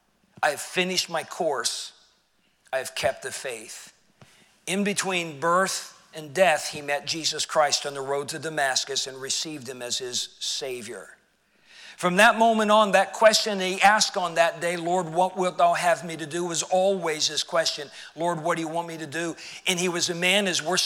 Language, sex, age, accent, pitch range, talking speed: English, male, 50-69, American, 175-225 Hz, 195 wpm